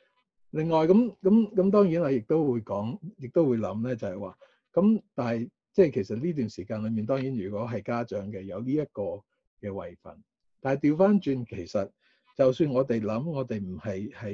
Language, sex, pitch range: Chinese, male, 105-145 Hz